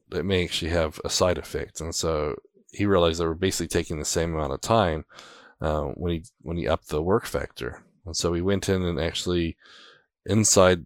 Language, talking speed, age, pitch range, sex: English, 205 wpm, 20-39, 85-100 Hz, male